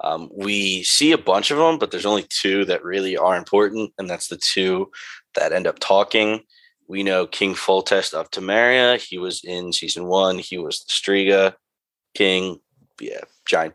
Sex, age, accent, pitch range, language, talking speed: male, 20-39, American, 90-115 Hz, English, 180 wpm